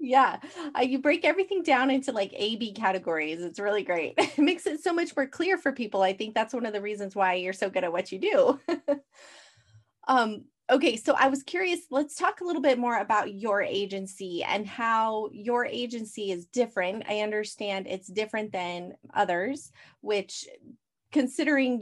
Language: English